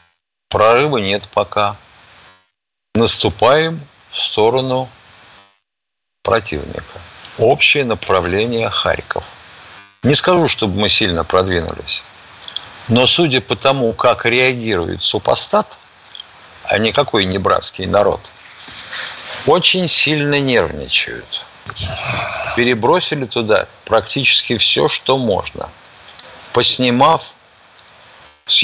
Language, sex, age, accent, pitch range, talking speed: Russian, male, 50-69, native, 100-130 Hz, 80 wpm